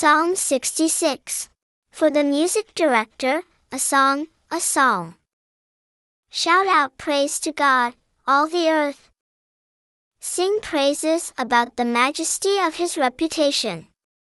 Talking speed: 110 wpm